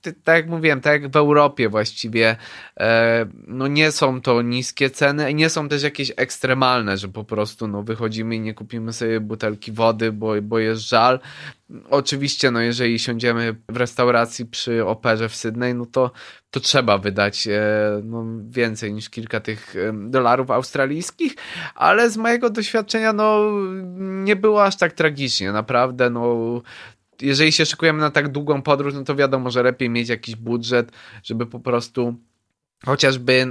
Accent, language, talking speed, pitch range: native, Polish, 160 wpm, 115-140 Hz